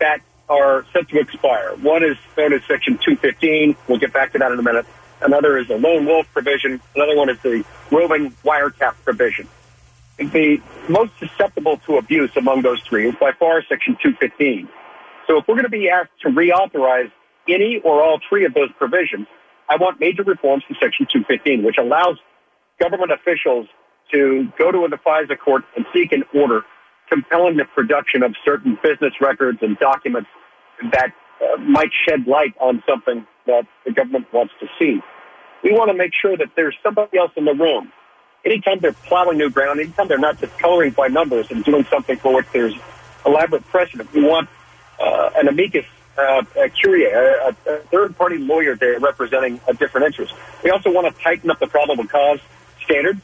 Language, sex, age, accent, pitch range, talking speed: English, male, 50-69, American, 135-185 Hz, 185 wpm